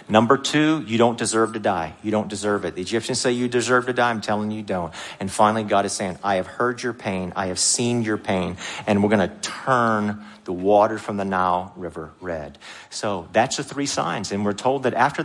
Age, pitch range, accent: 50-69, 95-120 Hz, American